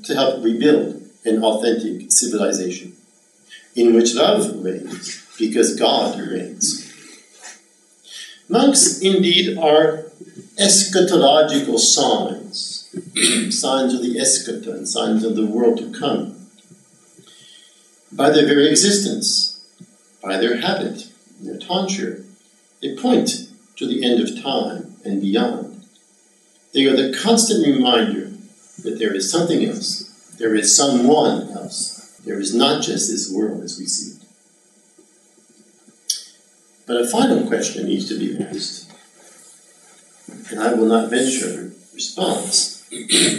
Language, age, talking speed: English, 50-69, 120 wpm